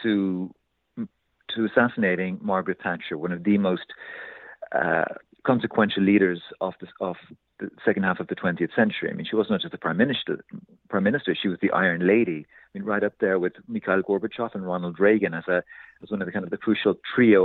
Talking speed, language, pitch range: 205 wpm, English, 95-120 Hz